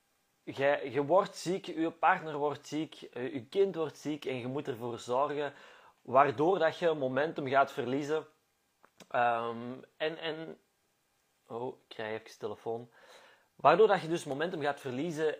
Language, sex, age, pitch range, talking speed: Dutch, male, 30-49, 130-175 Hz, 150 wpm